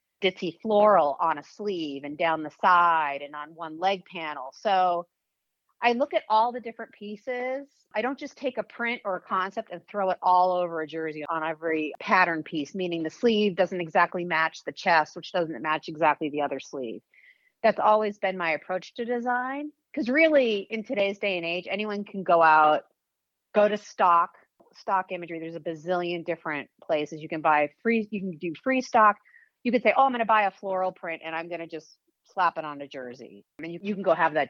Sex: female